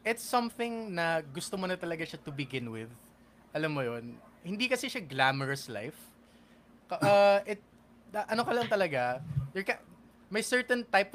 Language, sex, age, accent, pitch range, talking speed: English, male, 20-39, Filipino, 140-190 Hz, 160 wpm